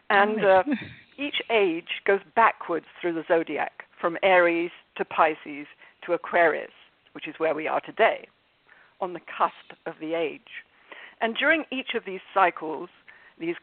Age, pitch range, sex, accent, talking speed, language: 50-69, 170-250 Hz, female, British, 150 wpm, English